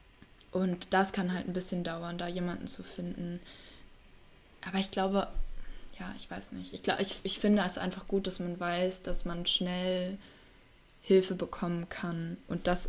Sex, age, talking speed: female, 20-39, 165 wpm